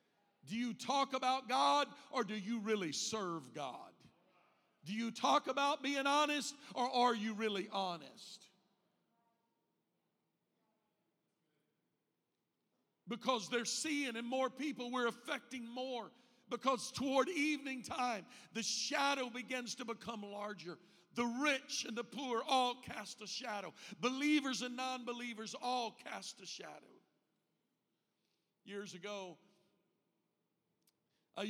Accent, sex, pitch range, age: American, male, 200-250 Hz, 50-69